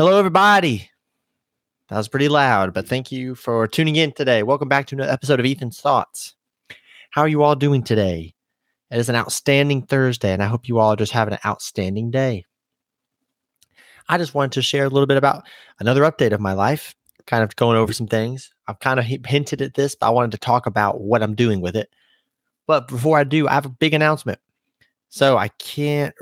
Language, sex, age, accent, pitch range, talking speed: English, male, 30-49, American, 110-140 Hz, 210 wpm